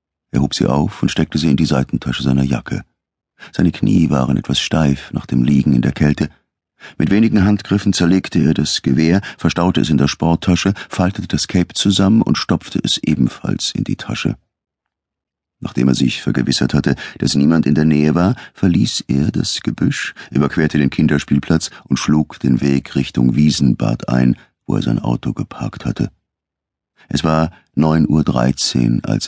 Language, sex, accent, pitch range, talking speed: German, male, German, 65-90 Hz, 170 wpm